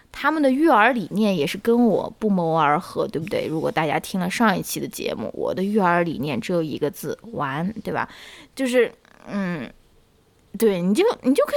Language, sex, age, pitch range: Chinese, female, 20-39, 180-240 Hz